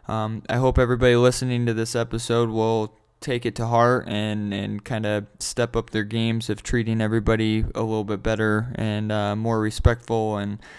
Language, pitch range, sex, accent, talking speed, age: English, 105-125 Hz, male, American, 185 wpm, 20-39